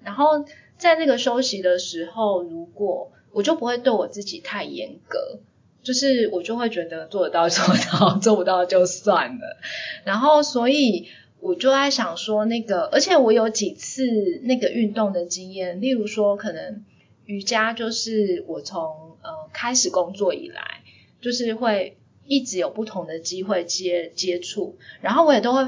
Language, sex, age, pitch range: Chinese, female, 20-39, 195-270 Hz